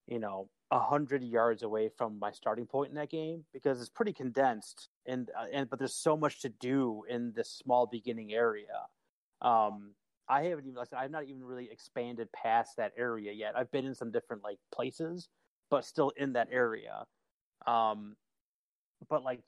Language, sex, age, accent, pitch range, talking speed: English, male, 30-49, American, 115-140 Hz, 190 wpm